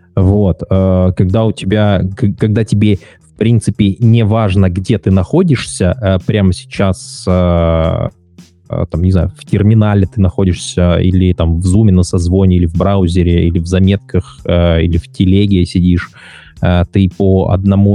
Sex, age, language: male, 20-39, Russian